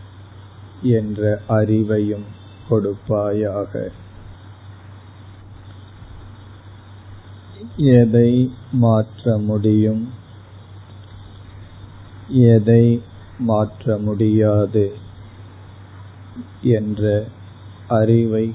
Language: Tamil